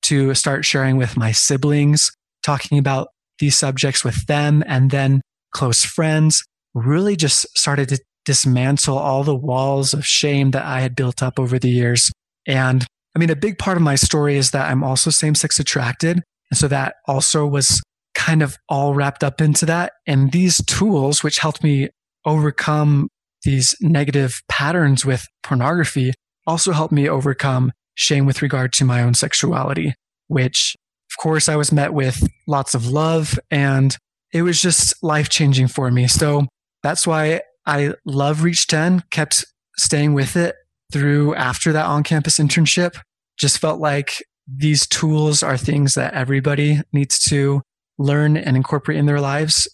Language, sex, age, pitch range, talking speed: English, male, 20-39, 135-155 Hz, 160 wpm